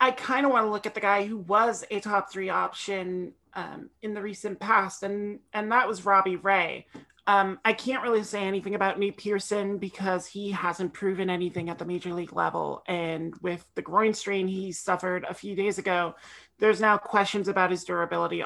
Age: 30-49